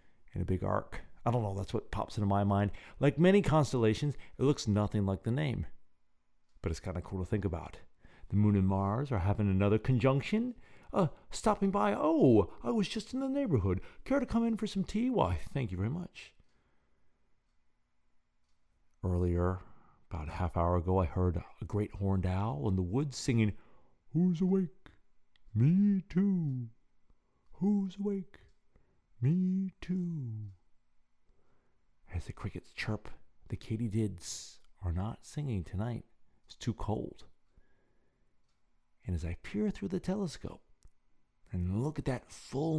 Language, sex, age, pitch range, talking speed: English, male, 50-69, 90-140 Hz, 150 wpm